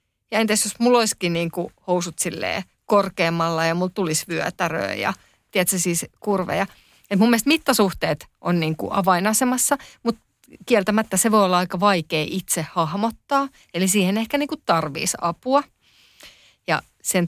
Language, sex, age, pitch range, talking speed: Finnish, female, 30-49, 170-210 Hz, 140 wpm